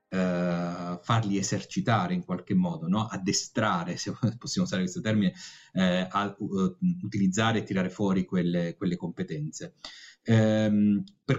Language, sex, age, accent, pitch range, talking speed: Italian, male, 30-49, native, 95-130 Hz, 130 wpm